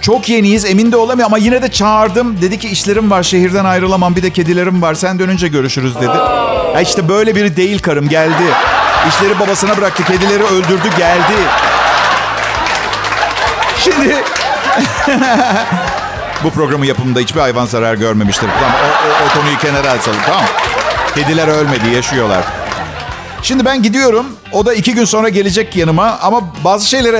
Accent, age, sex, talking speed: native, 50-69, male, 150 wpm